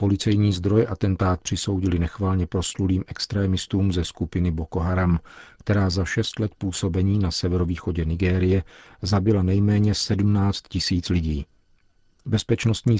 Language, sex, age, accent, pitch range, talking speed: Czech, male, 50-69, native, 90-105 Hz, 115 wpm